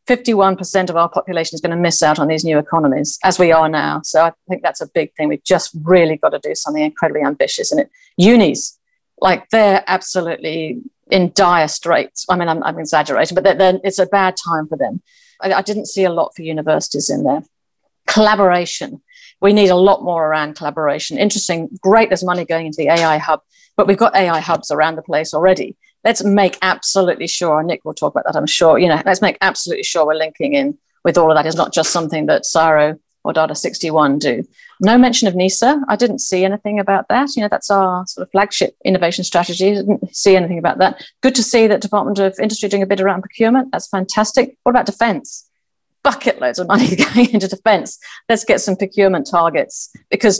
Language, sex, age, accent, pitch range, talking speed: English, female, 50-69, British, 165-215 Hz, 215 wpm